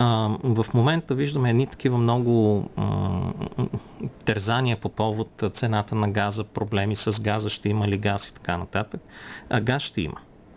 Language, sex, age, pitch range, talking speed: Bulgarian, male, 40-59, 95-120 Hz, 160 wpm